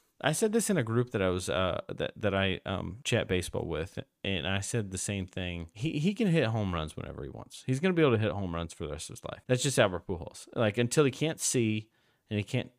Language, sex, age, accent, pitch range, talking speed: English, male, 30-49, American, 95-135 Hz, 270 wpm